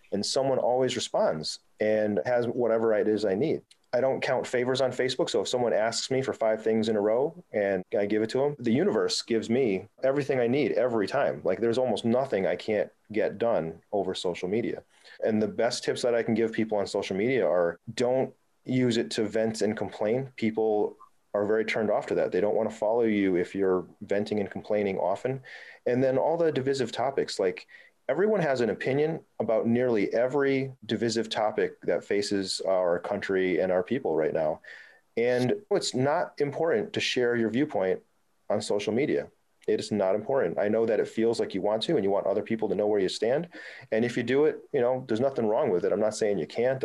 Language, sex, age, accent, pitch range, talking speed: English, male, 30-49, American, 105-135 Hz, 215 wpm